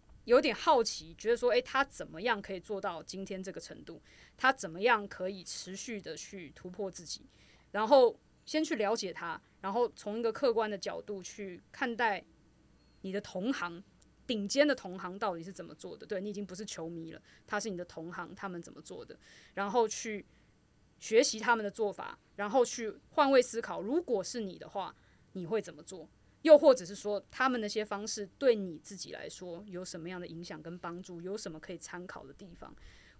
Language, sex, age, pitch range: Chinese, female, 20-39, 180-230 Hz